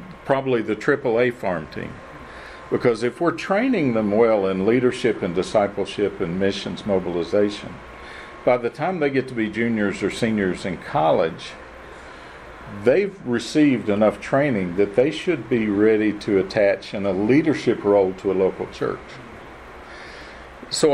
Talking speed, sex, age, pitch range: 145 wpm, male, 50-69, 105-135 Hz